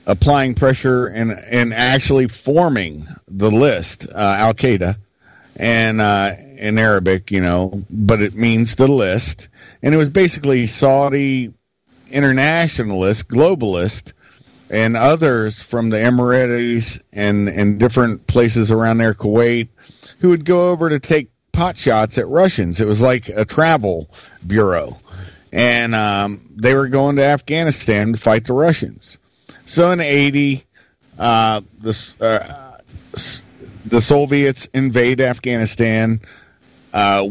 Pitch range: 105-135 Hz